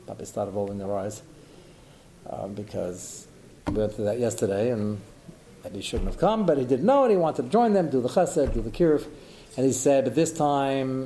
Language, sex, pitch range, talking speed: English, male, 120-165 Hz, 215 wpm